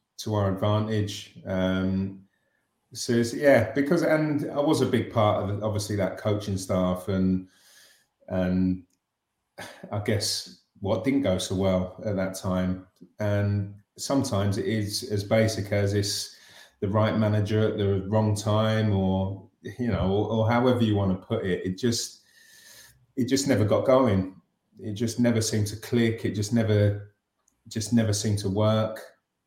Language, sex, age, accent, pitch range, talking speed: English, male, 30-49, British, 95-110 Hz, 160 wpm